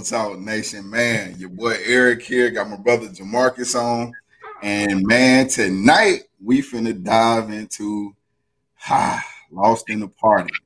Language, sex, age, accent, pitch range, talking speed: English, male, 20-39, American, 105-125 Hz, 135 wpm